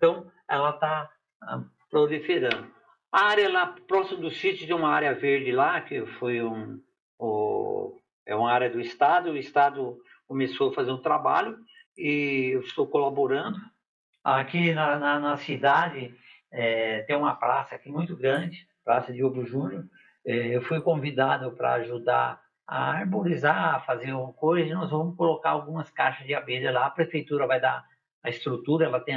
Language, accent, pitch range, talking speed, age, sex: Portuguese, Brazilian, 135-195 Hz, 165 wpm, 60-79, male